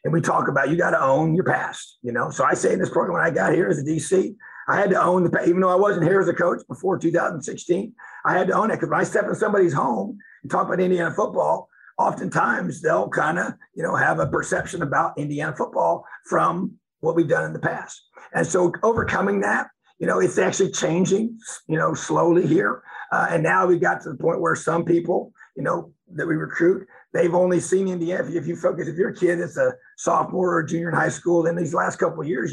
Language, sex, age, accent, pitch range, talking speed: English, male, 50-69, American, 165-190 Hz, 235 wpm